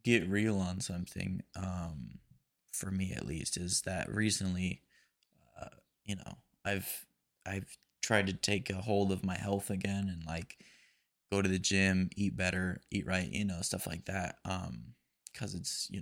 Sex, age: male, 20-39